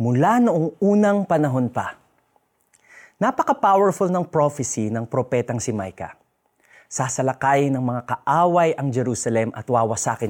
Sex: male